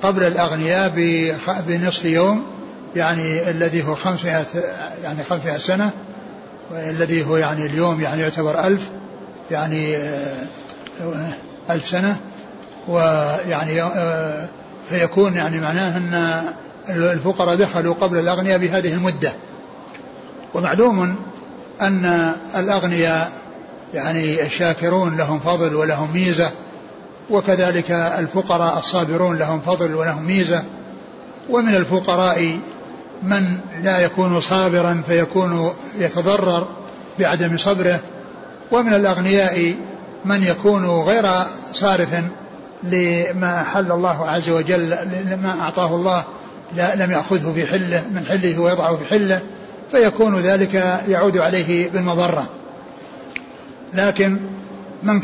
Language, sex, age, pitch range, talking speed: Arabic, male, 60-79, 165-190 Hz, 95 wpm